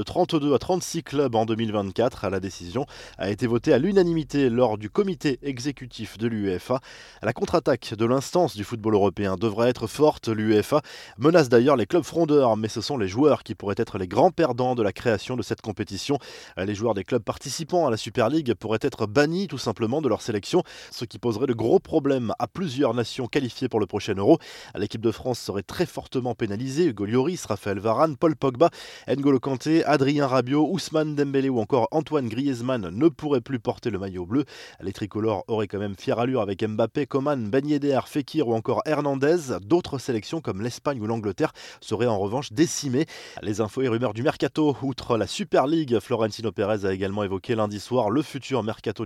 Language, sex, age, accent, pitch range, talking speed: French, male, 20-39, French, 110-145 Hz, 195 wpm